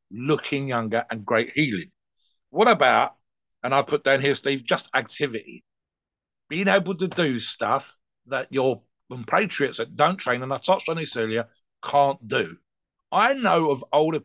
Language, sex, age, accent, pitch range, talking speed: English, male, 50-69, British, 120-155 Hz, 160 wpm